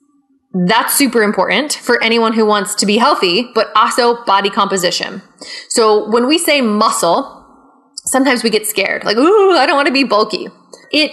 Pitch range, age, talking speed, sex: 210-275 Hz, 20-39, 175 wpm, female